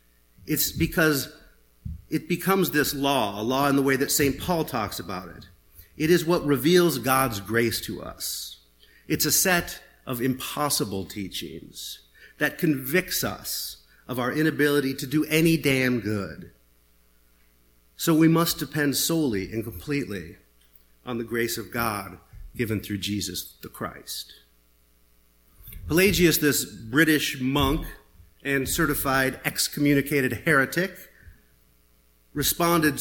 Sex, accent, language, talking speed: male, American, English, 125 wpm